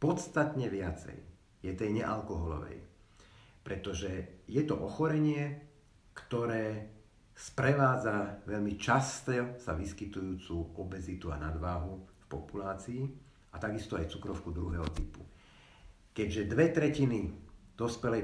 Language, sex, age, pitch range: Slovak, male, 50-69, 90-115 Hz